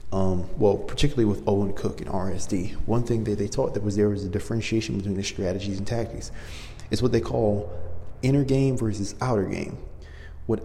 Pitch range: 95-115 Hz